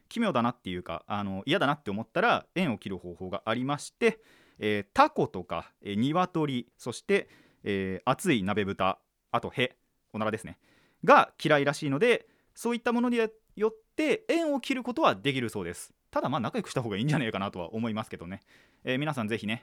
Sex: male